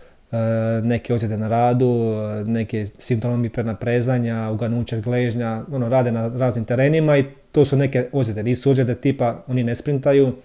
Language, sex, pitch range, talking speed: Croatian, male, 115-130 Hz, 150 wpm